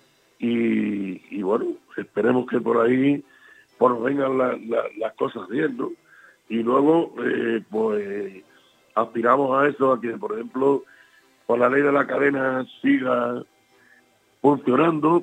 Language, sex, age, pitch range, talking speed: Spanish, male, 60-79, 125-165 Hz, 135 wpm